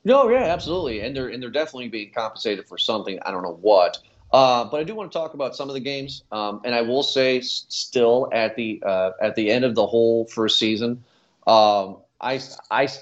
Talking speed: 215 wpm